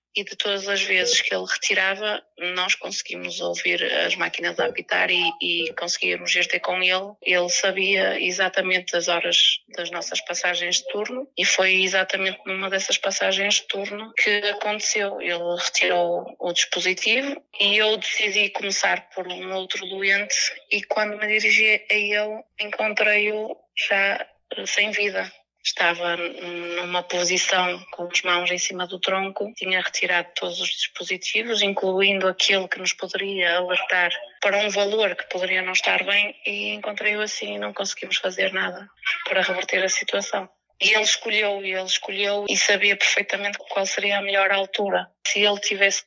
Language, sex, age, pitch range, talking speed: Portuguese, female, 20-39, 180-210 Hz, 160 wpm